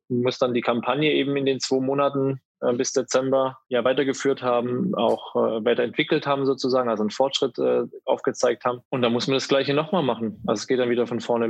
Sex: male